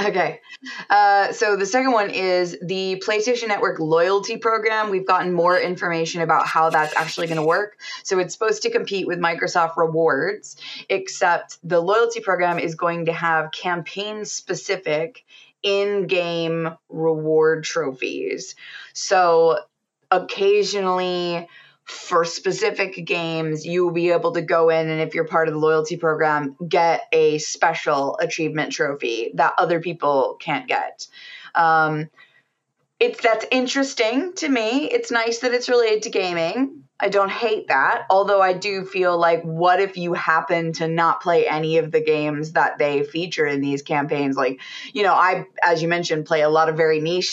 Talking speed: 160 wpm